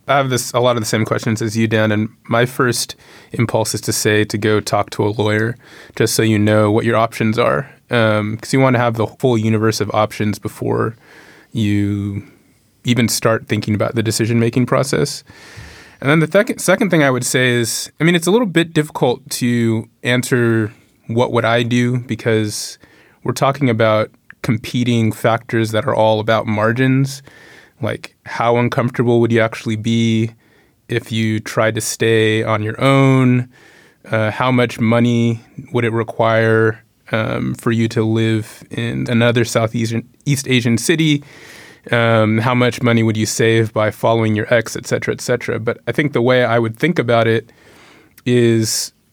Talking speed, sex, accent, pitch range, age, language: 175 wpm, male, American, 110-125 Hz, 20-39, English